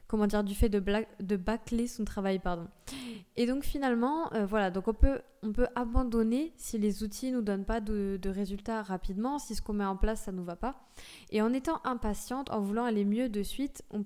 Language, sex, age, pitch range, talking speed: French, female, 20-39, 200-245 Hz, 225 wpm